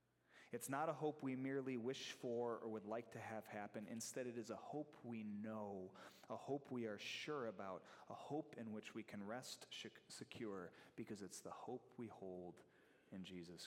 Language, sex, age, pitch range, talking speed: English, male, 30-49, 100-130 Hz, 190 wpm